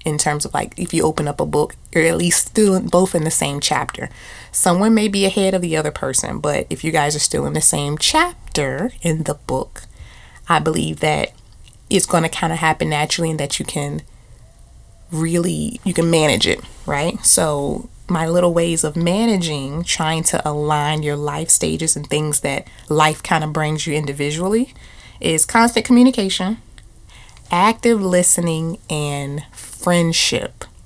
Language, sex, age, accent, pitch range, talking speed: English, female, 20-39, American, 150-185 Hz, 170 wpm